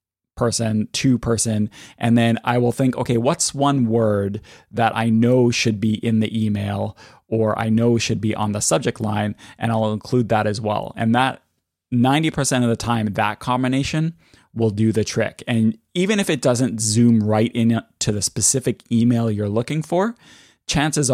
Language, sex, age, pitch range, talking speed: English, male, 20-39, 110-120 Hz, 180 wpm